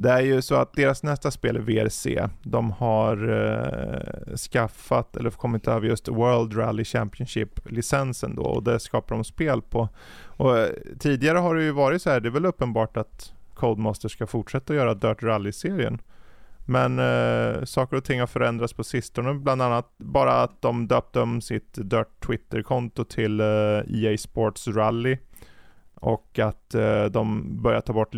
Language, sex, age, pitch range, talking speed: Swedish, male, 20-39, 110-140 Hz, 160 wpm